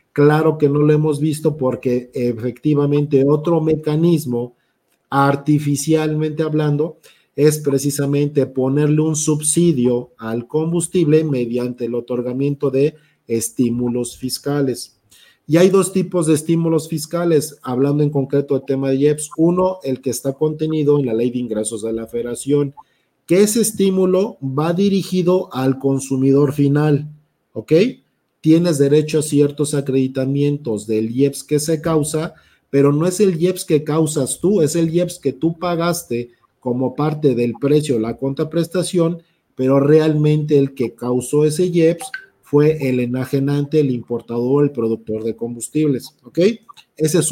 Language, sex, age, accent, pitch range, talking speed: Spanish, male, 40-59, Mexican, 130-160 Hz, 140 wpm